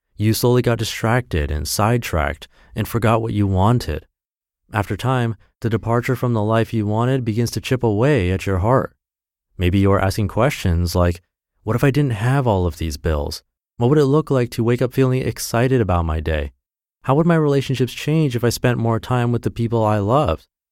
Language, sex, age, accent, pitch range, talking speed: English, male, 30-49, American, 85-120 Hz, 200 wpm